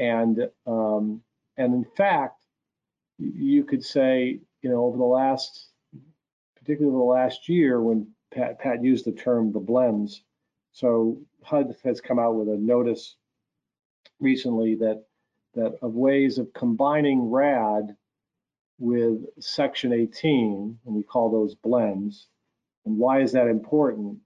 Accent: American